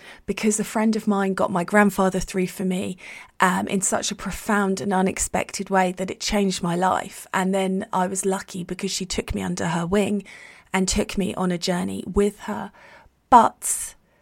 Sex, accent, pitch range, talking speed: female, British, 180-210 Hz, 190 wpm